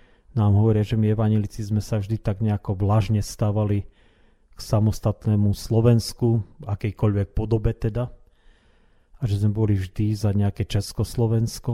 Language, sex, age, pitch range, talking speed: Slovak, male, 40-59, 95-115 Hz, 135 wpm